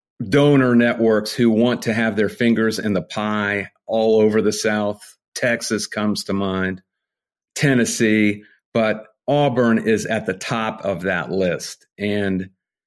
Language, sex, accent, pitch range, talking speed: English, male, American, 110-135 Hz, 140 wpm